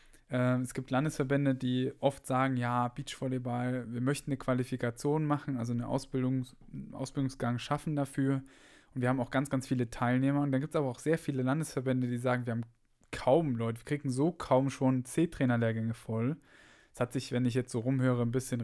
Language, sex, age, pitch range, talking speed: German, male, 10-29, 125-140 Hz, 195 wpm